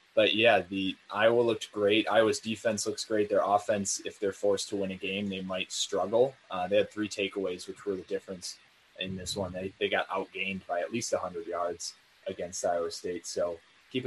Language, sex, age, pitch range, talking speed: English, male, 20-39, 95-125 Hz, 205 wpm